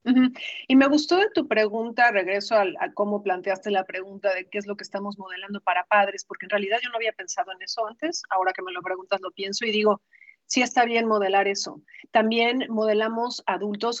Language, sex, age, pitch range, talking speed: Spanish, female, 40-59, 195-230 Hz, 215 wpm